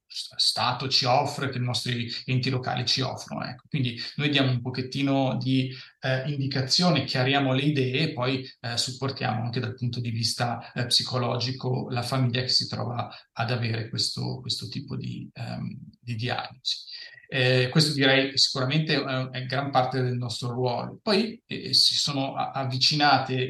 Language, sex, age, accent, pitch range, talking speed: Italian, male, 30-49, native, 125-140 Hz, 160 wpm